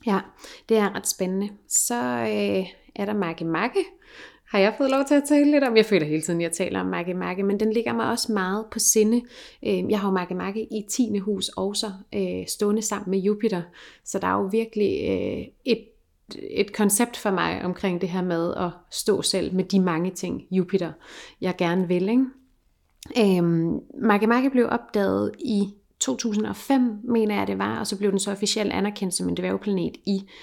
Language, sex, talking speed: Danish, female, 185 wpm